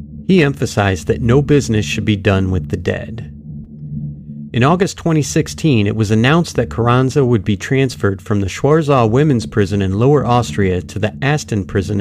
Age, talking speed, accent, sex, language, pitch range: 40-59, 170 wpm, American, male, English, 95-130 Hz